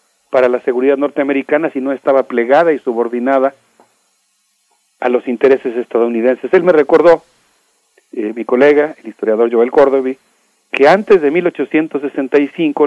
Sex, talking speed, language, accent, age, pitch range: male, 130 wpm, Spanish, Mexican, 40-59, 125-160 Hz